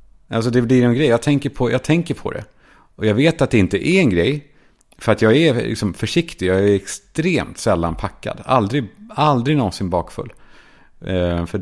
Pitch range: 95-125 Hz